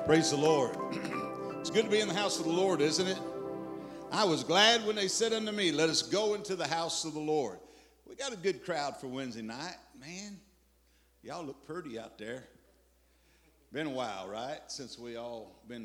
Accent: American